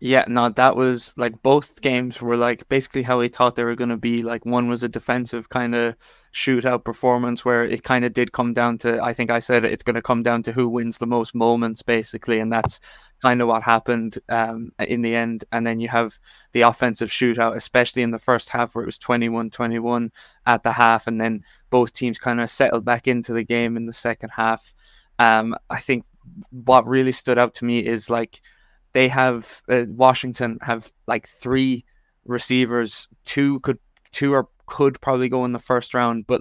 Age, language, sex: 20-39, English, male